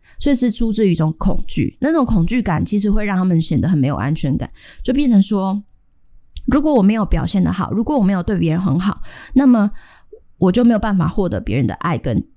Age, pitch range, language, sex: 20-39, 165-220 Hz, Chinese, female